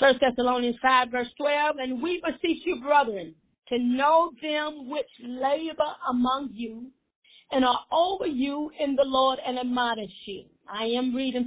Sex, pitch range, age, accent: female, 245-300 Hz, 40-59, American